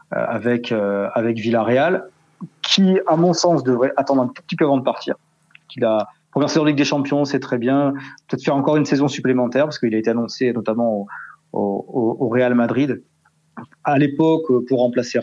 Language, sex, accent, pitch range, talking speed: French, male, French, 115-145 Hz, 185 wpm